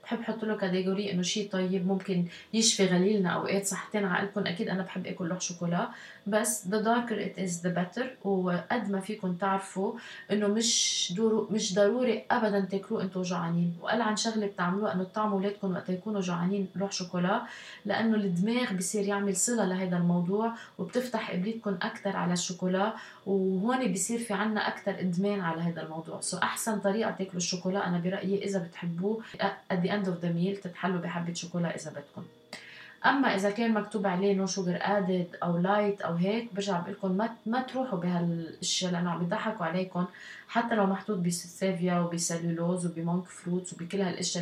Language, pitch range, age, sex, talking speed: Arabic, 180-210 Hz, 20-39, female, 160 wpm